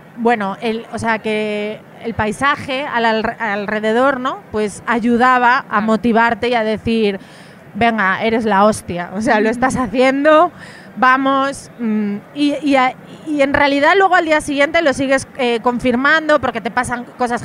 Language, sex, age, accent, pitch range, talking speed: Spanish, female, 30-49, Spanish, 220-260 Hz, 160 wpm